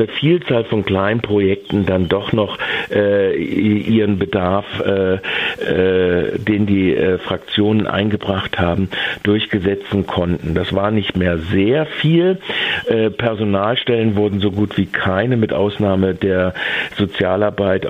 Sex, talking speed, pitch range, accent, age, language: male, 125 wpm, 95-110 Hz, German, 50-69, German